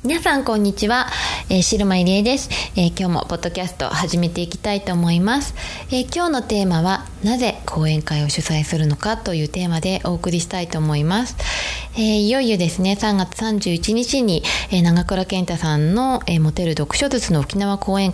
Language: Japanese